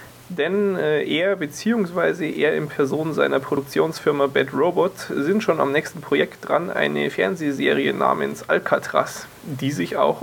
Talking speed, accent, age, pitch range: 135 wpm, German, 20-39, 130-160 Hz